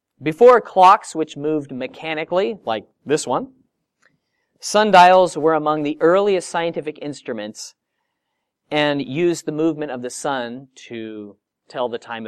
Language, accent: English, American